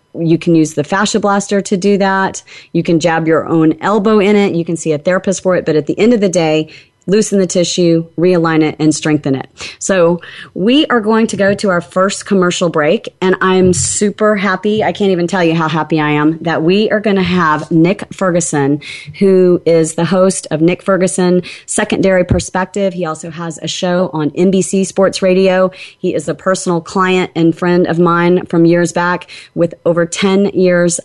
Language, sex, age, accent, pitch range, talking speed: English, female, 30-49, American, 160-190 Hz, 205 wpm